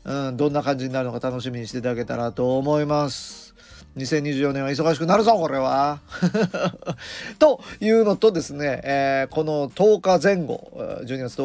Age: 40-59